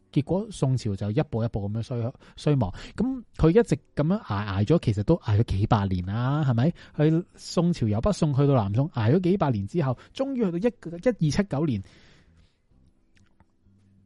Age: 30-49